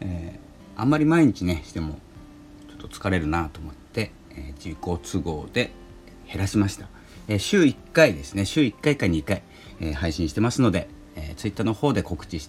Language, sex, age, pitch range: Japanese, male, 40-59, 80-105 Hz